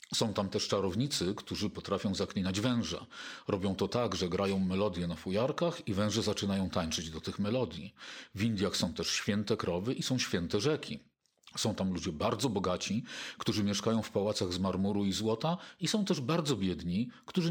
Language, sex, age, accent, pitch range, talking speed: Polish, male, 50-69, native, 100-140 Hz, 180 wpm